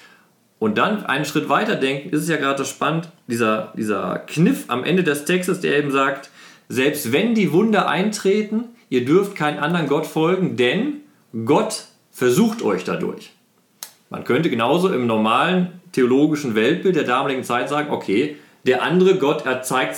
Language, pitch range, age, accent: German, 115-155 Hz, 40-59, German